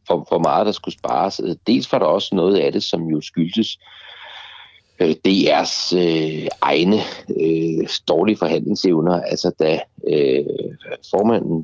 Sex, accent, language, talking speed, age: male, native, Danish, 130 wpm, 60-79